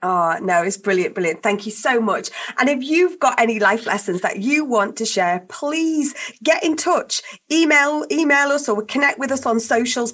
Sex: female